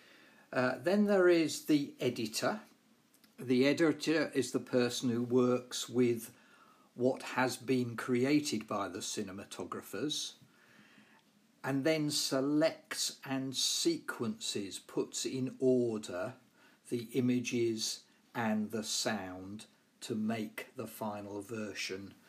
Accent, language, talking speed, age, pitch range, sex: British, English, 105 wpm, 50-69, 115-175 Hz, male